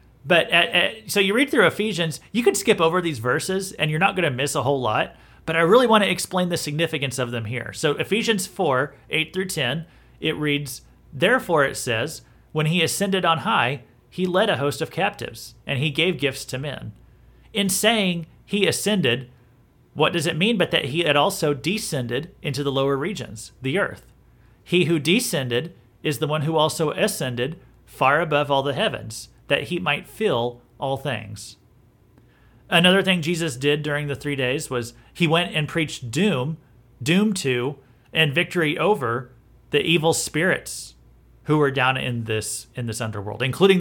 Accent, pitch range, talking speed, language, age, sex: American, 125-170 Hz, 180 wpm, English, 40-59, male